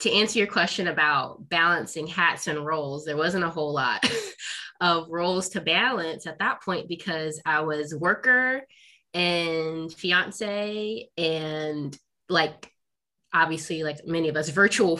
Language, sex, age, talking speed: English, female, 20-39, 140 wpm